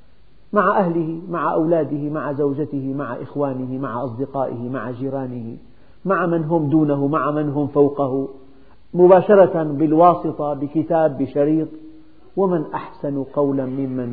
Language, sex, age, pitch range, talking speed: Arabic, male, 50-69, 130-165 Hz, 120 wpm